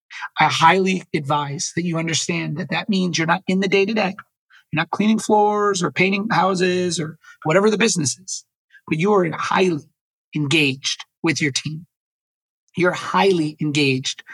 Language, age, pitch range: English, 30-49, 150-200 Hz